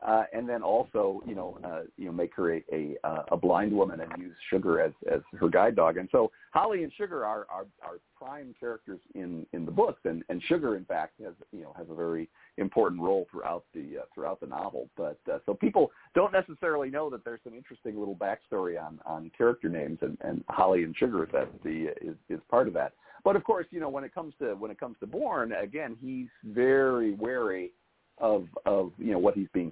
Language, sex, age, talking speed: English, male, 50-69, 230 wpm